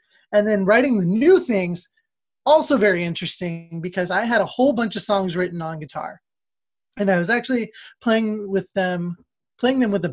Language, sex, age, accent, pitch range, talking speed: English, male, 30-49, American, 170-205 Hz, 185 wpm